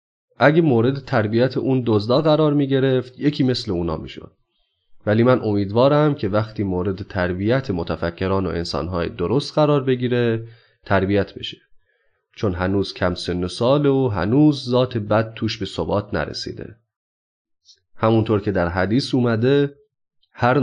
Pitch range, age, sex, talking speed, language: 95-125 Hz, 30-49, male, 135 wpm, Persian